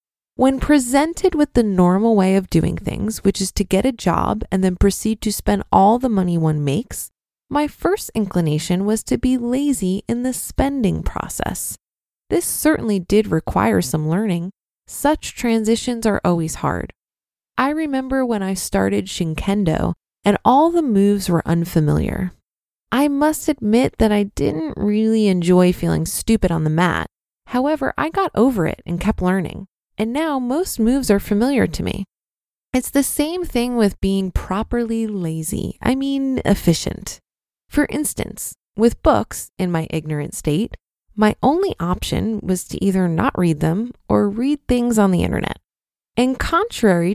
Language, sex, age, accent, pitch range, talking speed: English, female, 20-39, American, 175-250 Hz, 160 wpm